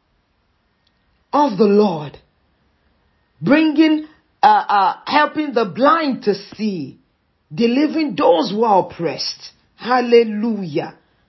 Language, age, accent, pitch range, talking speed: English, 40-59, Nigerian, 155-225 Hz, 90 wpm